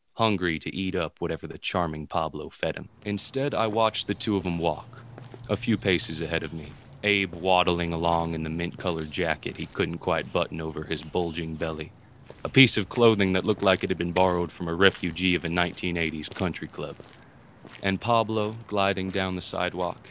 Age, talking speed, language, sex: 20-39, 190 wpm, English, male